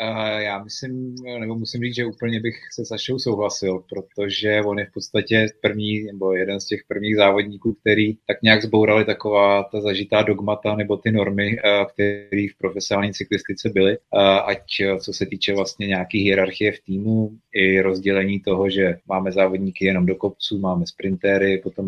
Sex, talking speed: male, 165 wpm